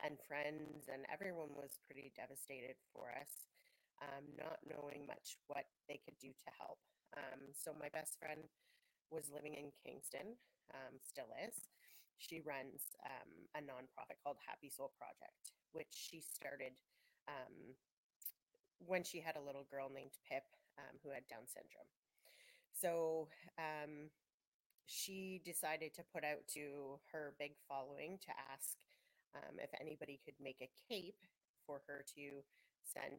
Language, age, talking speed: English, 30-49, 145 wpm